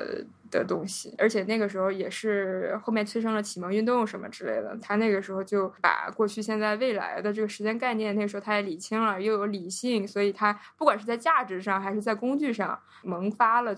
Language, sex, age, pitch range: Chinese, female, 20-39, 190-210 Hz